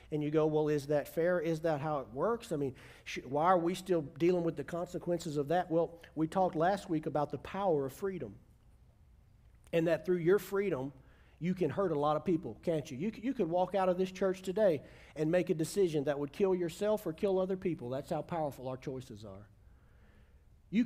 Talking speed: 220 wpm